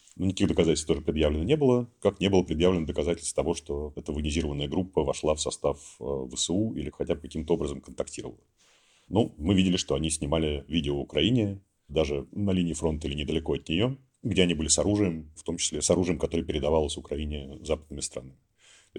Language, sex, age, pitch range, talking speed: Russian, male, 40-59, 75-90 Hz, 185 wpm